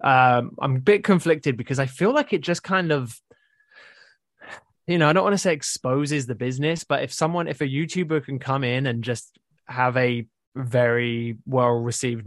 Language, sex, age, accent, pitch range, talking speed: English, male, 20-39, British, 120-145 Hz, 185 wpm